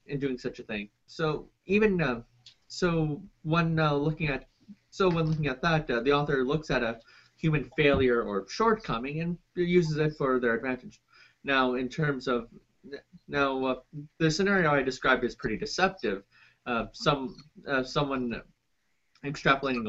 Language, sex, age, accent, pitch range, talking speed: English, male, 30-49, American, 125-155 Hz, 155 wpm